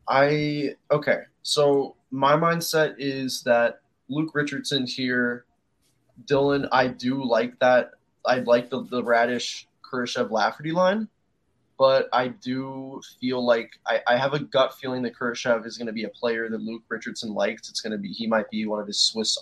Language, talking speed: English, 175 wpm